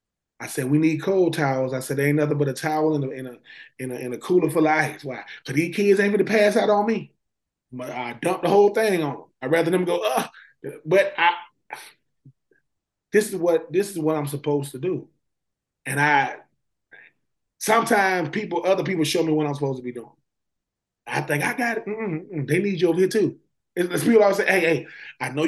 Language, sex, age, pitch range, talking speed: English, male, 20-39, 135-185 Hz, 230 wpm